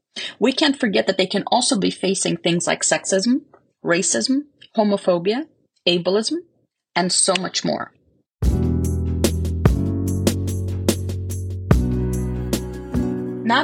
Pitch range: 170-225 Hz